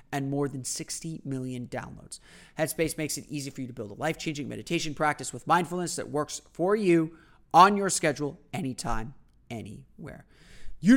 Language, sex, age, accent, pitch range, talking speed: English, male, 30-49, American, 145-185 Hz, 165 wpm